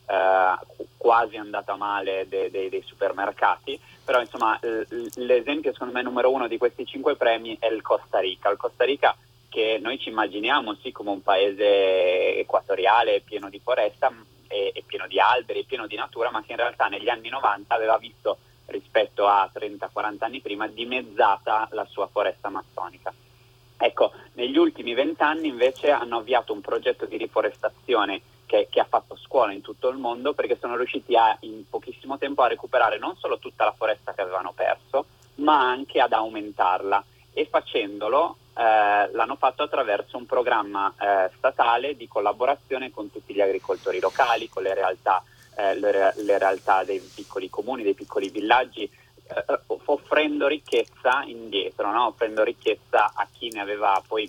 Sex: male